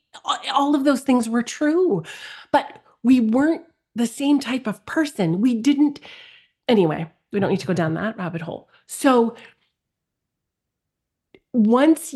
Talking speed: 140 wpm